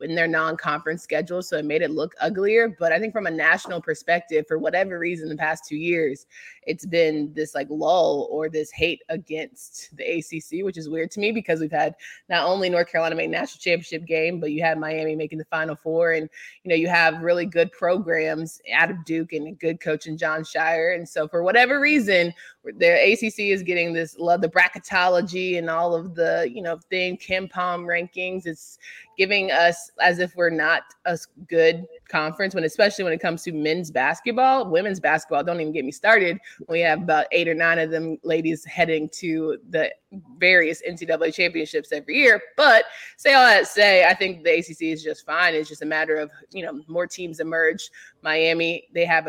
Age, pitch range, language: 20-39, 160-185 Hz, English